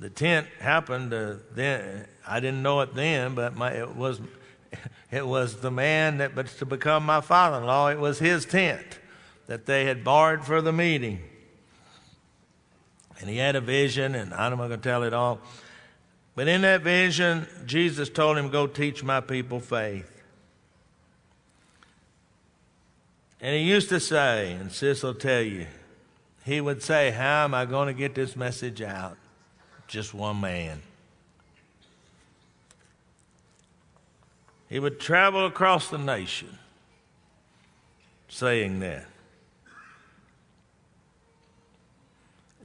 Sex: male